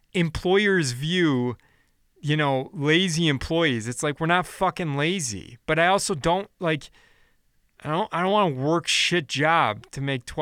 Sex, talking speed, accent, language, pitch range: male, 160 wpm, American, English, 135-170 Hz